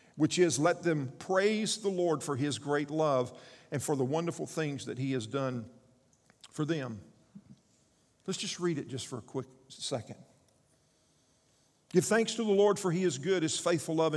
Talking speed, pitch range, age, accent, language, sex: 180 wpm, 145-200 Hz, 50-69, American, English, male